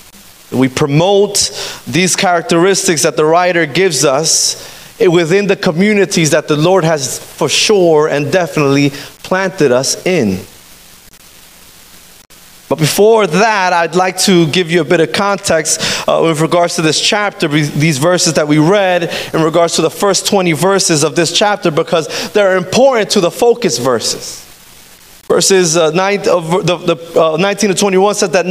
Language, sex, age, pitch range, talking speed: Spanish, male, 30-49, 170-230 Hz, 160 wpm